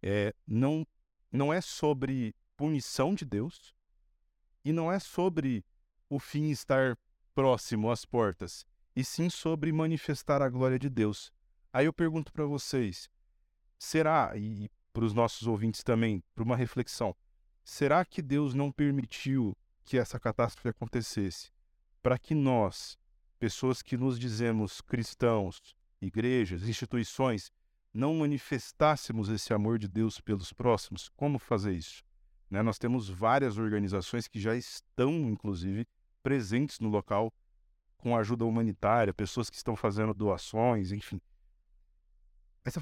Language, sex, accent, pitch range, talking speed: Portuguese, male, Brazilian, 100-135 Hz, 135 wpm